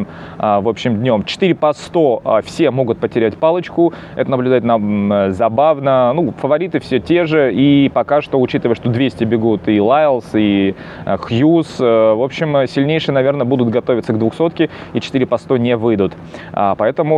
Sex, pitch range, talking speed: male, 105-140 Hz, 155 wpm